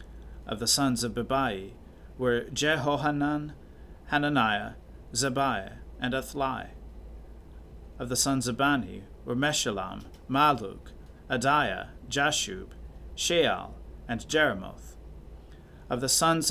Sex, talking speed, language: male, 100 wpm, English